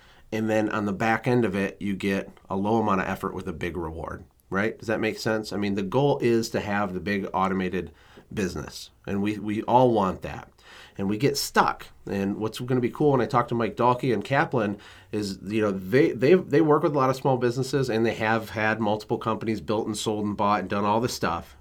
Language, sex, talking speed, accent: English, male, 245 wpm, American